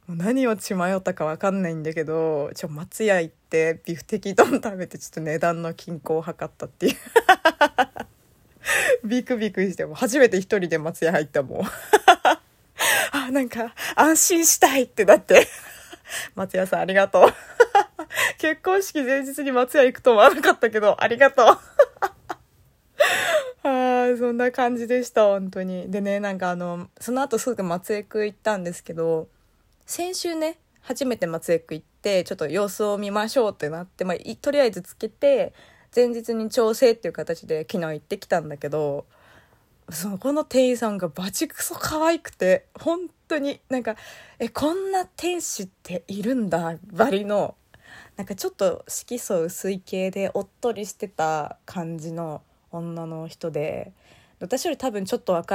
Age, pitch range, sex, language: 20-39, 170-260 Hz, female, Japanese